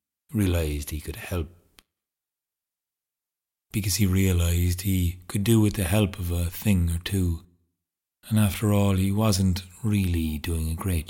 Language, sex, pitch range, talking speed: English, male, 75-95 Hz, 145 wpm